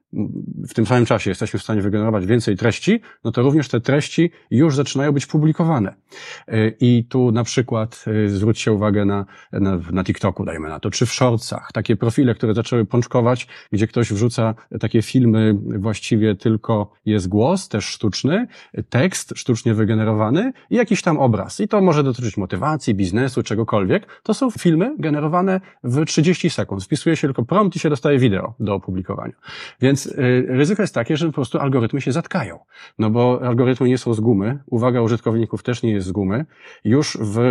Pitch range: 110-140 Hz